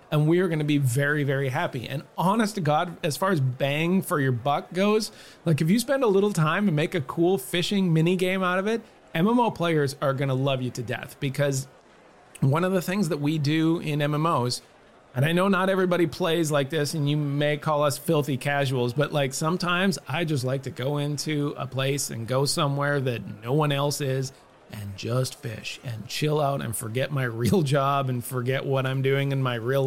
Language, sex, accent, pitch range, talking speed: English, male, American, 135-170 Hz, 220 wpm